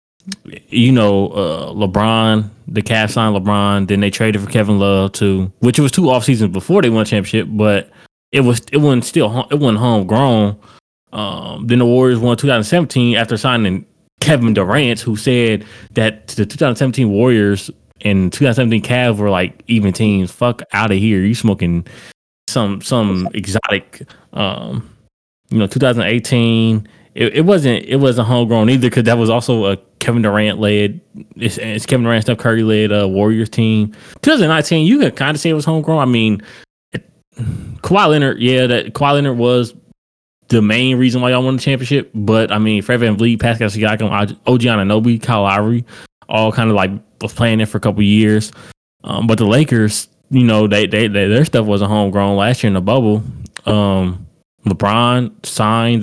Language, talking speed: English, 180 wpm